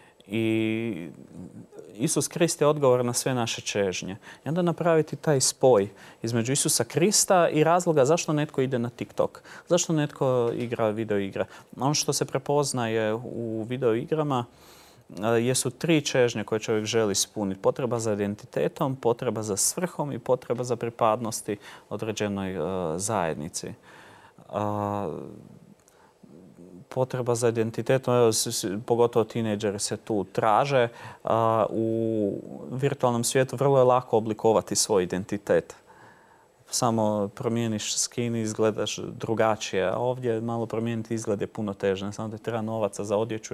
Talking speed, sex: 125 wpm, male